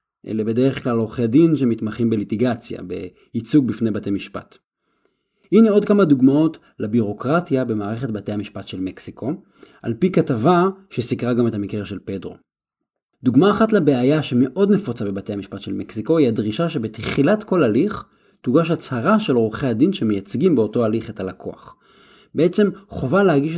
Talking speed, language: 145 wpm, Hebrew